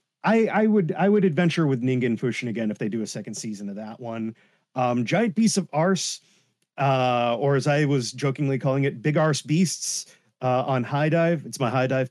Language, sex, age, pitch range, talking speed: English, male, 30-49, 120-170 Hz, 215 wpm